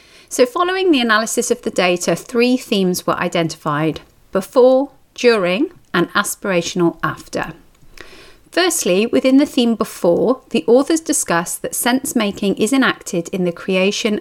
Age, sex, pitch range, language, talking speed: 40-59, female, 180-245 Hz, English, 135 wpm